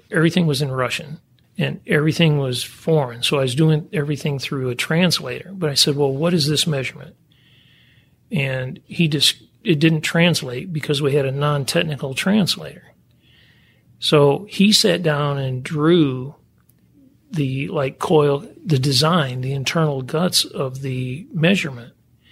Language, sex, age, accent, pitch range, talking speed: English, male, 40-59, American, 135-170 Hz, 145 wpm